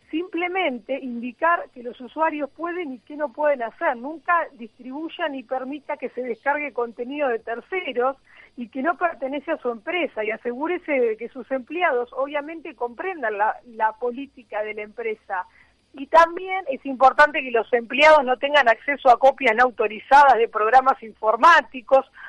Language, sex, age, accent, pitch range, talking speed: Spanish, female, 40-59, Argentinian, 240-310 Hz, 160 wpm